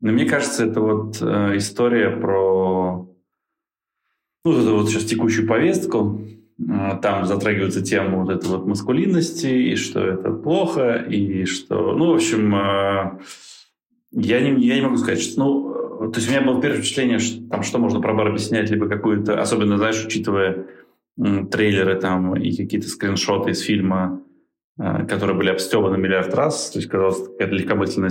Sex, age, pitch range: male, 20-39, 95-110 Hz